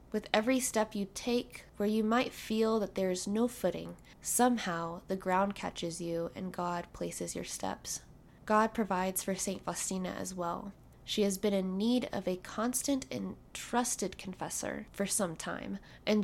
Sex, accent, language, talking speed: female, American, English, 165 wpm